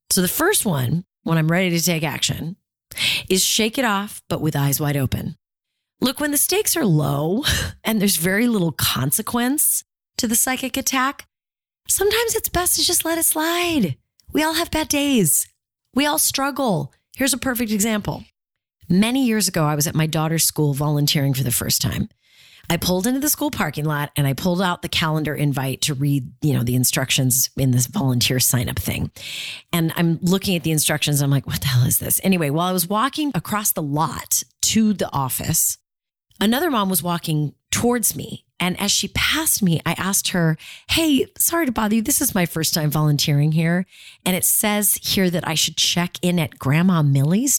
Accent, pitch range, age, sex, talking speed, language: American, 145-230 Hz, 30-49, female, 195 wpm, English